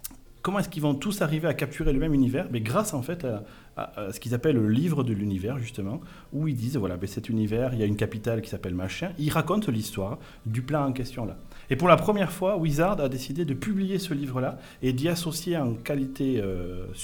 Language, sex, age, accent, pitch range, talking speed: French, male, 40-59, French, 115-150 Hz, 235 wpm